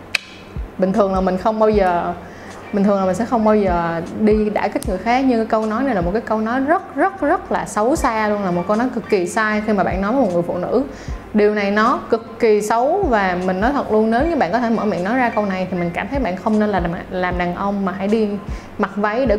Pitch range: 195-240 Hz